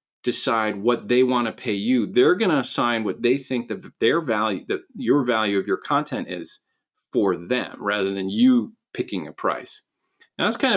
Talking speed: 195 wpm